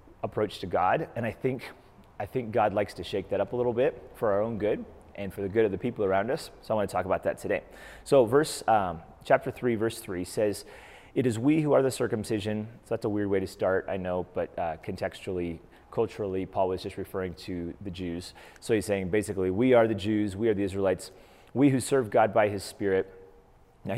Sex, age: male, 30-49